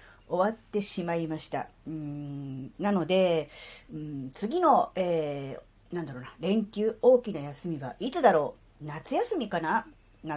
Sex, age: female, 40-59